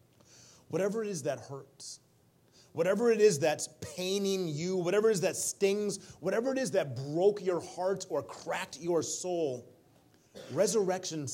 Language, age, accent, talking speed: English, 30-49, American, 150 wpm